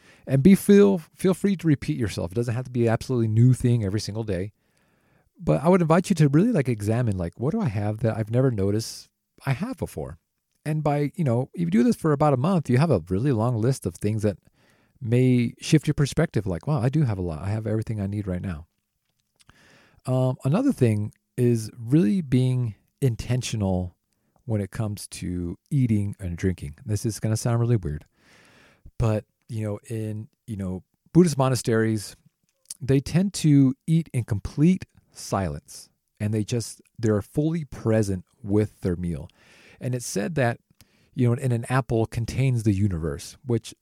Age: 40-59